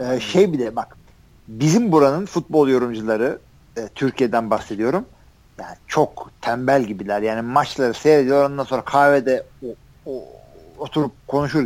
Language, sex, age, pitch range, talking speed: Turkish, male, 50-69, 120-175 Hz, 135 wpm